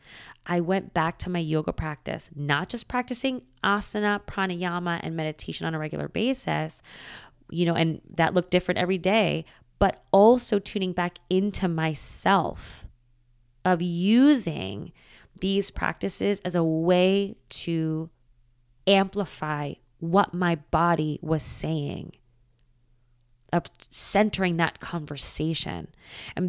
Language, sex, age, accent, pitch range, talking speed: English, female, 20-39, American, 140-195 Hz, 115 wpm